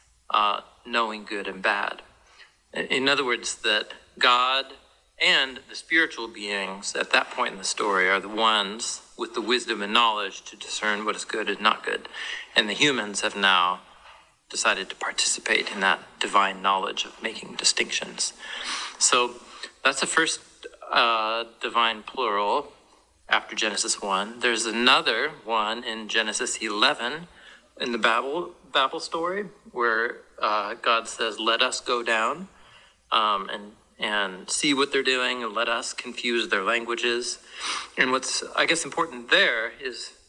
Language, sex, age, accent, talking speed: English, male, 40-59, American, 150 wpm